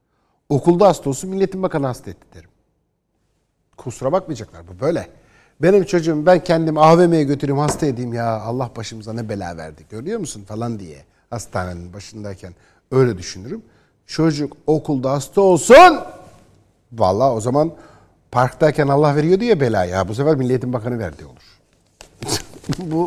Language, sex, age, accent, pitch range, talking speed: Turkish, male, 60-79, native, 115-165 Hz, 140 wpm